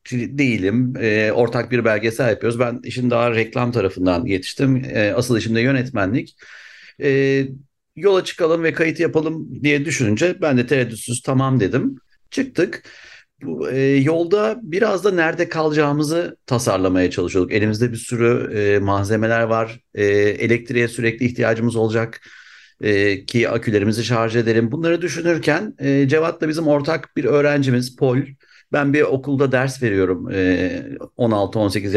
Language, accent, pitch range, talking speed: Turkish, native, 115-160 Hz, 130 wpm